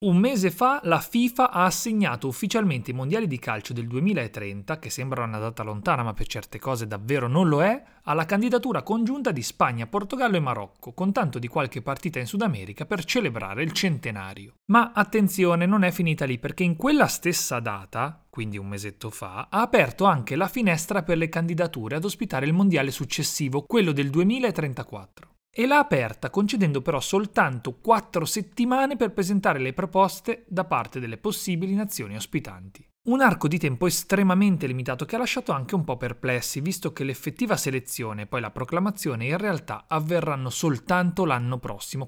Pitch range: 125-195 Hz